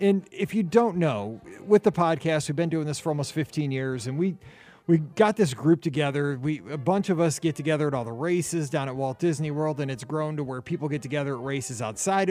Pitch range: 135-170 Hz